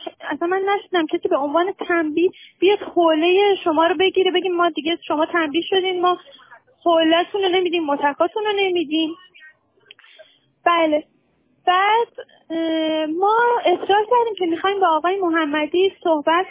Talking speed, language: 125 wpm, Persian